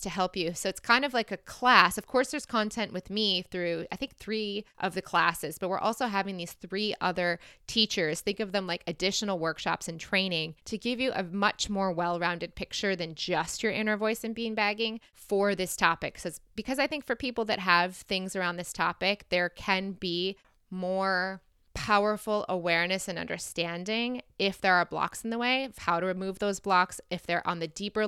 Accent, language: American, English